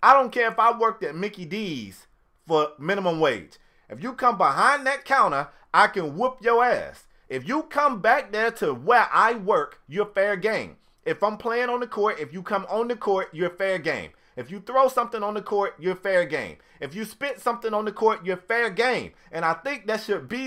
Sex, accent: male, American